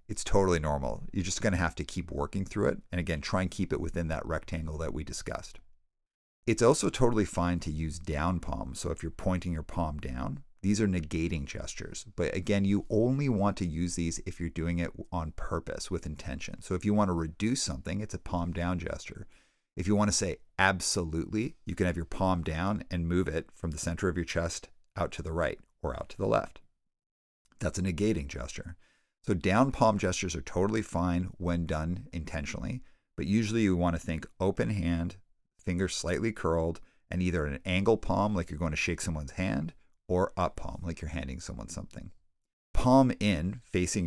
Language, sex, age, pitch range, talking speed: English, male, 50-69, 80-95 Hz, 205 wpm